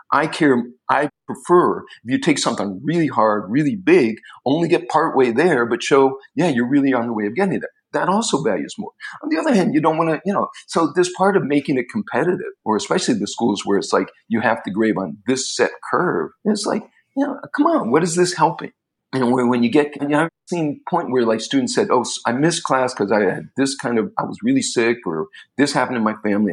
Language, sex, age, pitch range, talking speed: English, male, 40-59, 115-175 Hz, 245 wpm